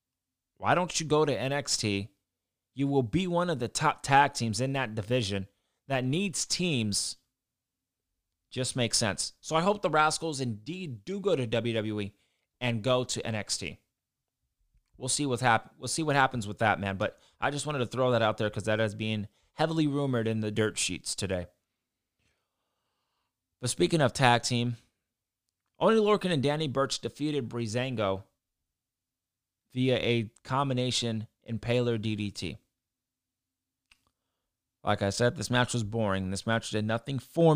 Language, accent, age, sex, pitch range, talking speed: English, American, 30-49, male, 105-130 Hz, 160 wpm